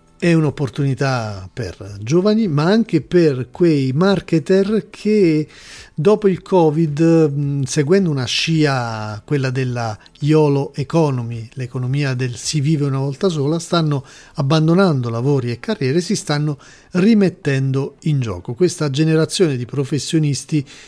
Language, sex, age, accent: Italian, male, 40-59, native